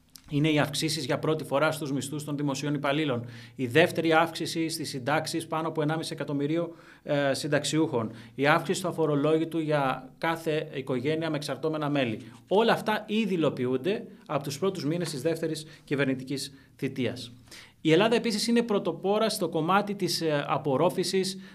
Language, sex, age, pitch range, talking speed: Greek, male, 30-49, 140-180 Hz, 150 wpm